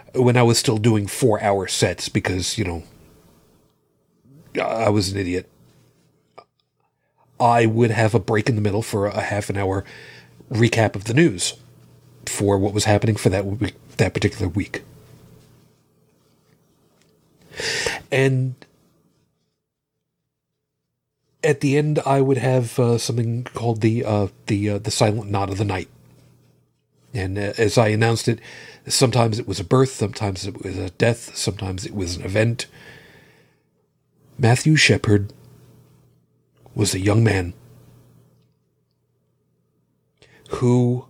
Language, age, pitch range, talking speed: English, 40-59, 105-135 Hz, 130 wpm